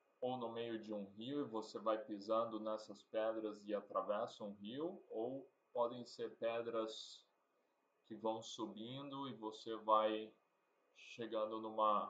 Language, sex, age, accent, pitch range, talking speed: Portuguese, male, 20-39, Brazilian, 110-120 Hz, 140 wpm